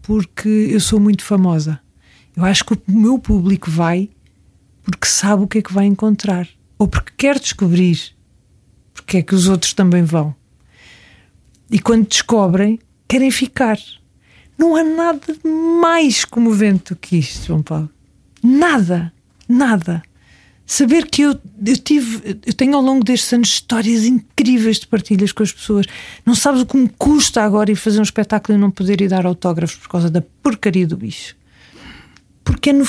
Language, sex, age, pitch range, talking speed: Portuguese, female, 40-59, 185-245 Hz, 170 wpm